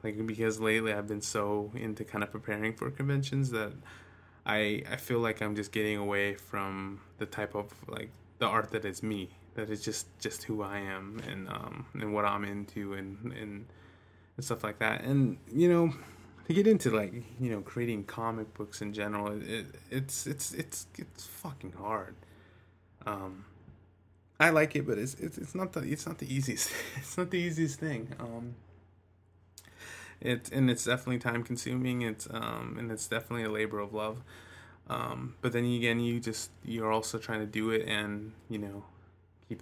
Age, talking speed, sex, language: 20-39, 185 wpm, male, English